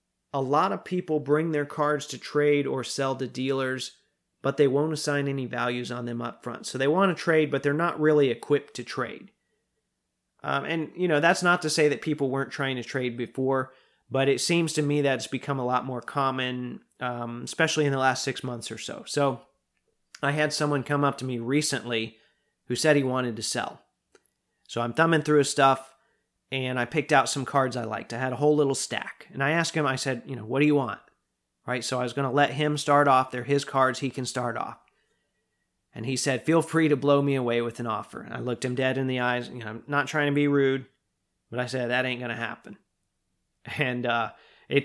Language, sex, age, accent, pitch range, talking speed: English, male, 30-49, American, 125-145 Hz, 235 wpm